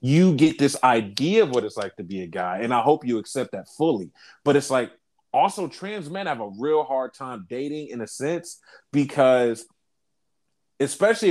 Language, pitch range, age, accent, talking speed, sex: English, 125-180 Hz, 30-49, American, 190 wpm, male